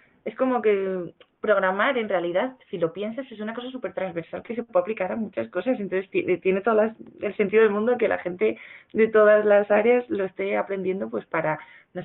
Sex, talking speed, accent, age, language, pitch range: female, 215 wpm, Spanish, 20-39, Spanish, 175-210 Hz